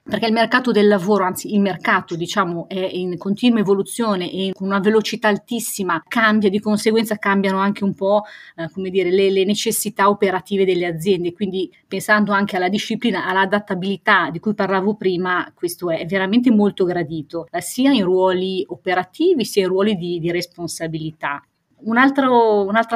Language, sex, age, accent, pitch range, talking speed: Italian, female, 30-49, native, 185-220 Hz, 160 wpm